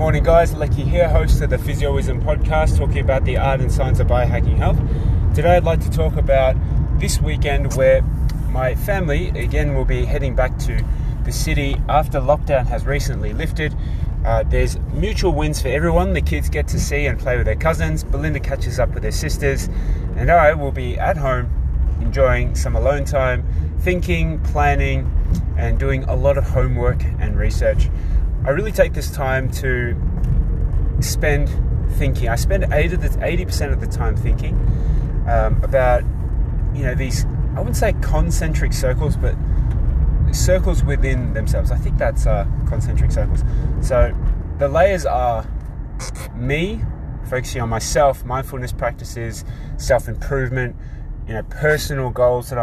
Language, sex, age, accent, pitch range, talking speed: English, male, 20-39, Australian, 75-115 Hz, 155 wpm